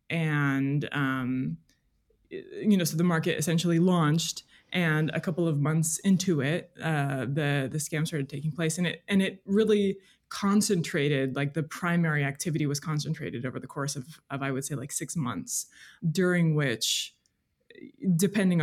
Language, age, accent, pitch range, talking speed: English, 20-39, American, 140-175 Hz, 160 wpm